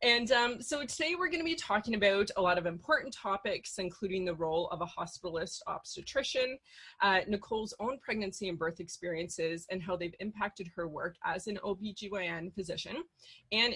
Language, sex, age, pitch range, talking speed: English, female, 20-39, 170-230 Hz, 175 wpm